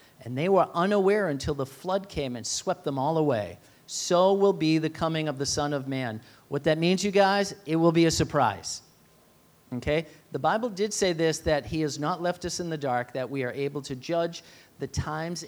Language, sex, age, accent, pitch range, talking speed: English, male, 40-59, American, 125-160 Hz, 215 wpm